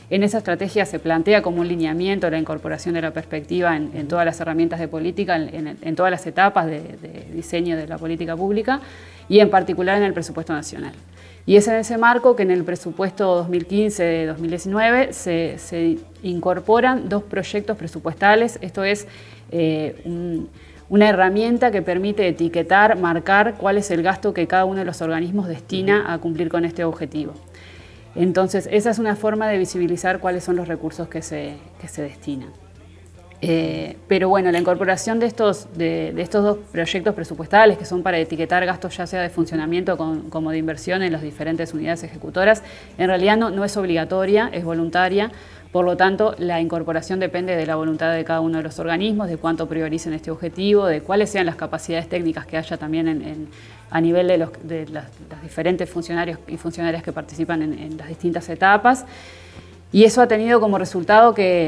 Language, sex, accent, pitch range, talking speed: Spanish, female, Argentinian, 160-195 Hz, 185 wpm